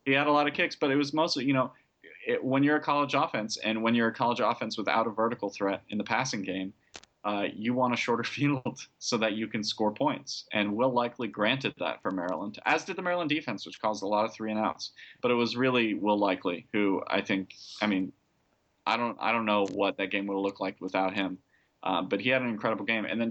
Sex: male